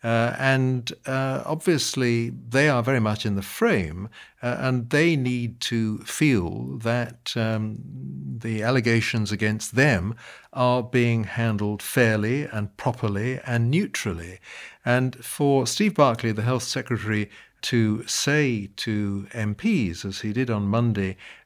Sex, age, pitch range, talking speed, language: male, 50-69, 105-130 Hz, 130 wpm, English